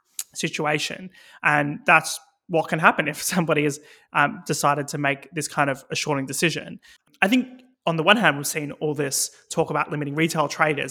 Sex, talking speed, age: male, 180 wpm, 20-39